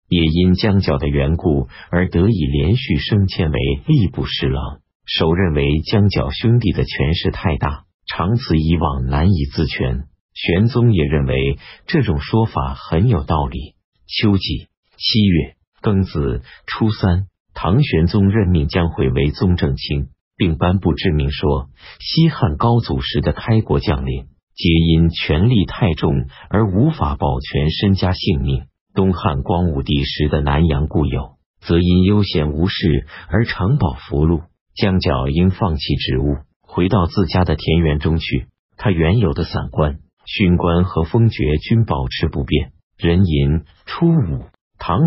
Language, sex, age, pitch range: Chinese, male, 50-69, 75-95 Hz